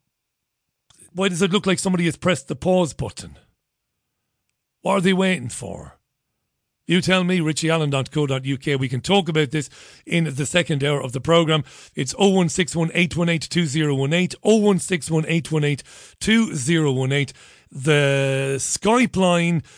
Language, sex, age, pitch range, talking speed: English, male, 40-59, 140-190 Hz, 115 wpm